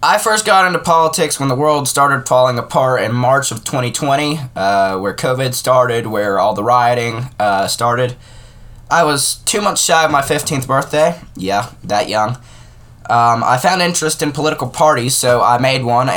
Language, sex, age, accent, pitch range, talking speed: English, male, 10-29, American, 115-140 Hz, 180 wpm